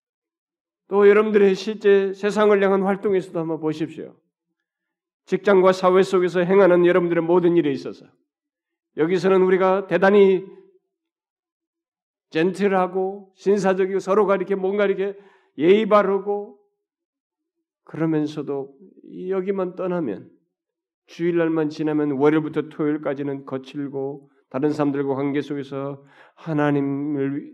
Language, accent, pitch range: Korean, native, 150-235 Hz